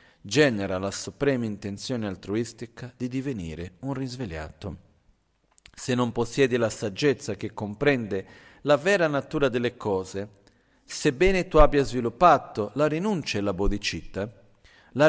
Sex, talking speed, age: male, 125 wpm, 50-69